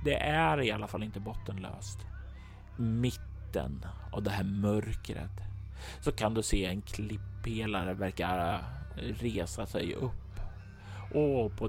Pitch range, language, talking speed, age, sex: 95-110 Hz, Swedish, 130 wpm, 30-49, male